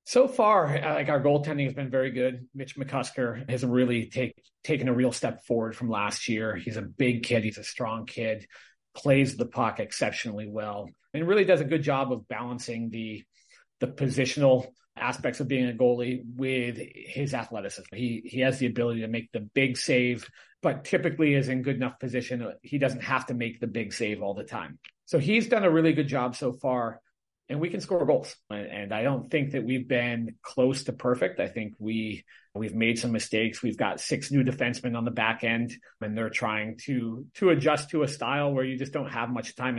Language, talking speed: English, 210 wpm